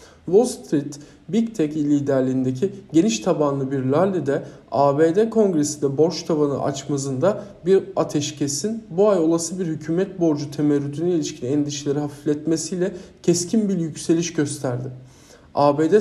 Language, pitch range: Turkish, 145-175 Hz